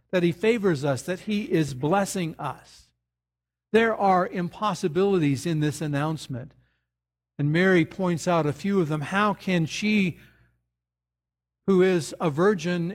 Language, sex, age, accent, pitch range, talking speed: English, male, 60-79, American, 140-190 Hz, 140 wpm